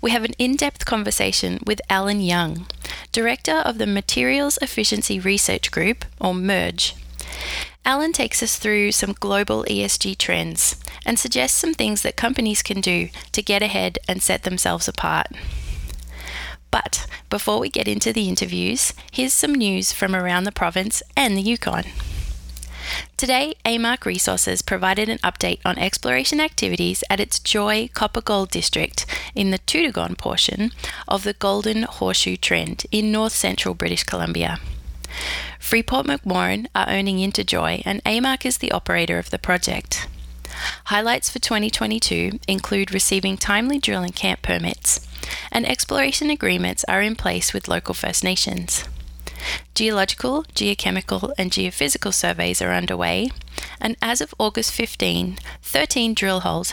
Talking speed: 140 wpm